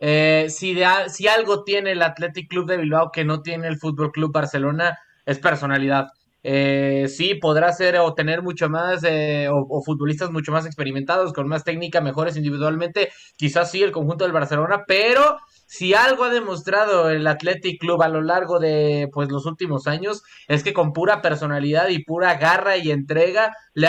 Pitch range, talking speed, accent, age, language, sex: 155-190 Hz, 185 wpm, Mexican, 20-39, Spanish, male